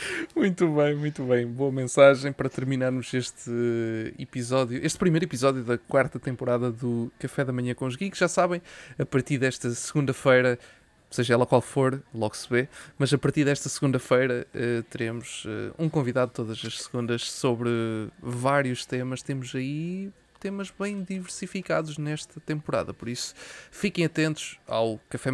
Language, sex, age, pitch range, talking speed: Portuguese, male, 20-39, 125-150 Hz, 150 wpm